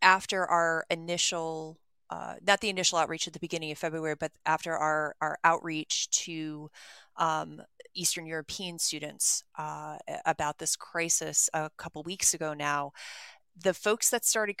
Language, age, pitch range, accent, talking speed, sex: English, 30-49, 155-175 Hz, American, 150 wpm, female